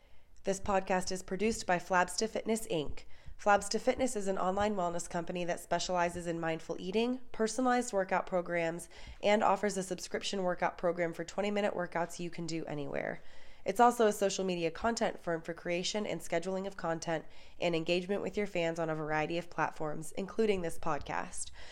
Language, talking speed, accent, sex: English, 175 wpm, American, female